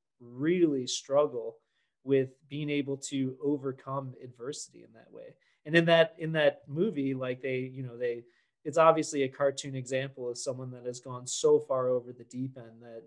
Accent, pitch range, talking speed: American, 130-165 Hz, 180 wpm